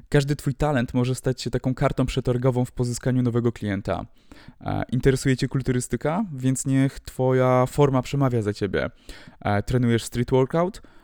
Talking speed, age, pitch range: 140 wpm, 20-39, 125-145 Hz